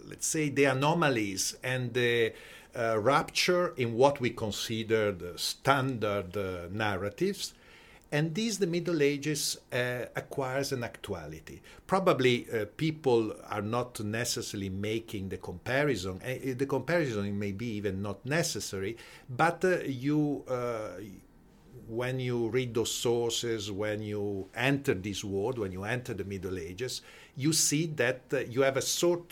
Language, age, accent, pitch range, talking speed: English, 50-69, Italian, 100-140 Hz, 140 wpm